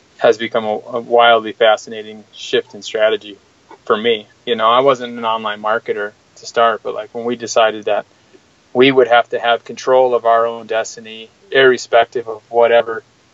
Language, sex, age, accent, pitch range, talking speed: English, male, 20-39, American, 115-135 Hz, 170 wpm